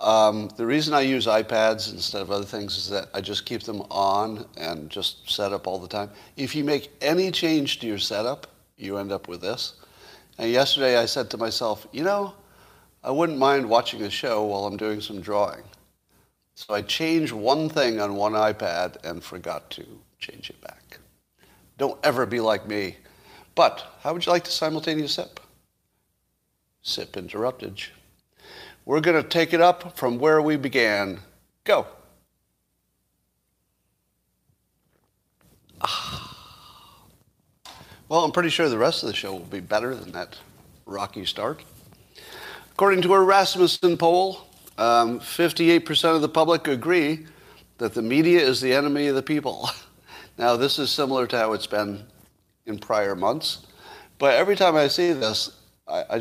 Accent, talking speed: American, 160 wpm